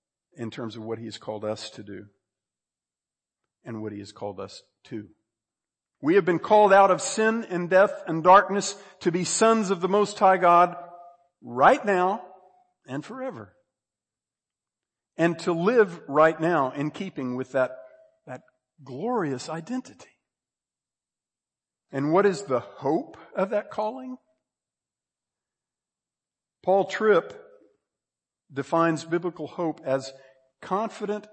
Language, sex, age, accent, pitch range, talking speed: English, male, 50-69, American, 140-200 Hz, 130 wpm